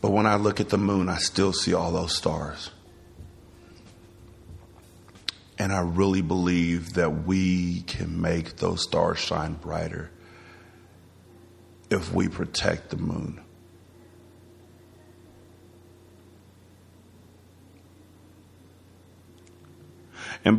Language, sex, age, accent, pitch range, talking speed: English, male, 50-69, American, 90-135 Hz, 90 wpm